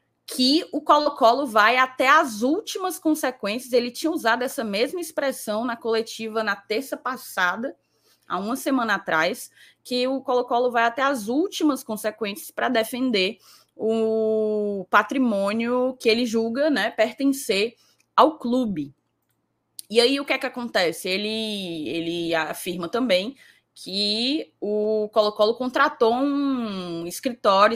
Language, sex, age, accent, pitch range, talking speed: Portuguese, female, 20-39, Brazilian, 210-270 Hz, 130 wpm